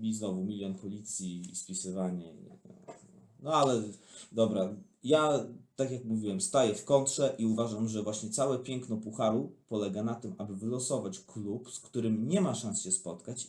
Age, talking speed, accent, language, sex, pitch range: 30-49, 160 wpm, native, Polish, male, 105-130 Hz